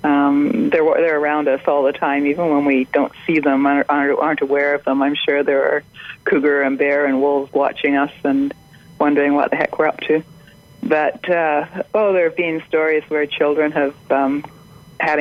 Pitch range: 145-165 Hz